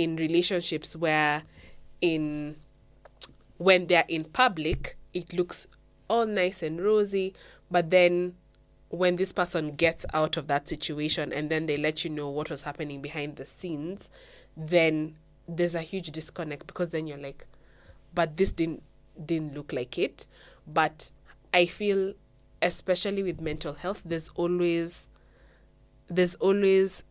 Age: 20-39